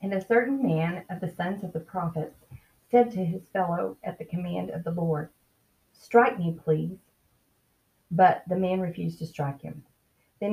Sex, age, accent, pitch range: female, 40-59, American, 150-185 Hz